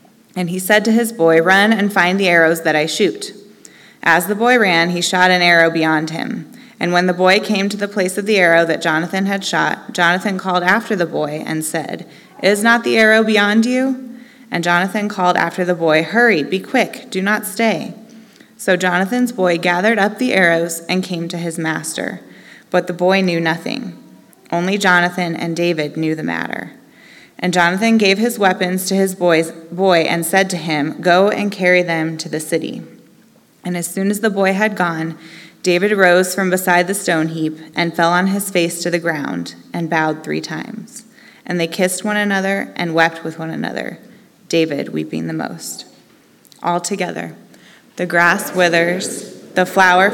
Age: 20-39